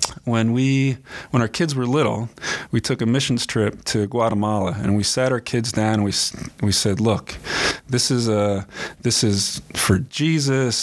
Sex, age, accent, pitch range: male, 30-49, American, 105-135 Hz